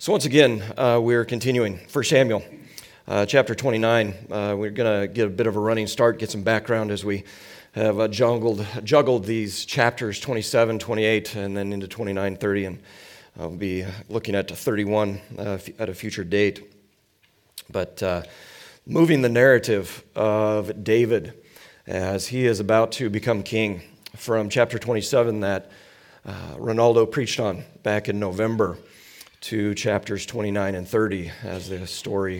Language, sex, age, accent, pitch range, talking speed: English, male, 40-59, American, 100-115 Hz, 155 wpm